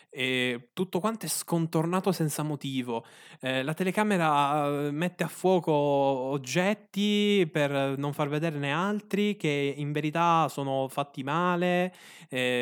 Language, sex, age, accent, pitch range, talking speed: Italian, male, 10-29, native, 125-180 Hz, 130 wpm